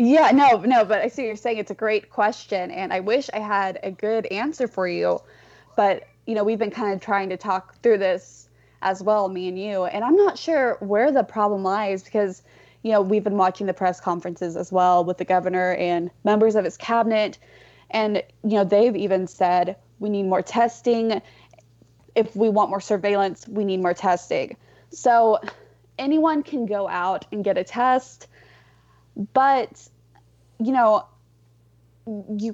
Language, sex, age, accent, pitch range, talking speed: English, female, 20-39, American, 185-230 Hz, 180 wpm